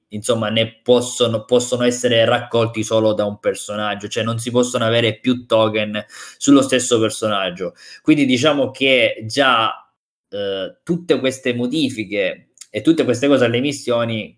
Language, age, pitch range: Italian, 20-39, 110-130 Hz